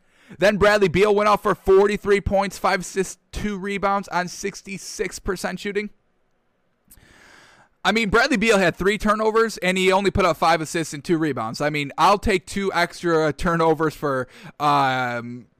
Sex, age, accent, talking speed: male, 10-29, American, 160 wpm